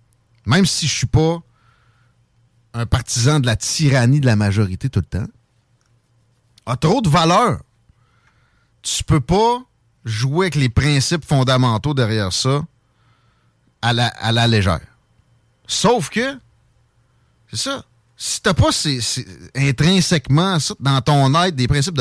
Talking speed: 145 wpm